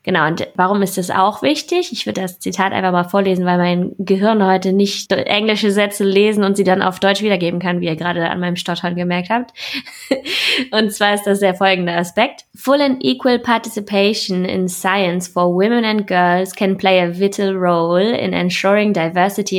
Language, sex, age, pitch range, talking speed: German, female, 20-39, 180-215 Hz, 190 wpm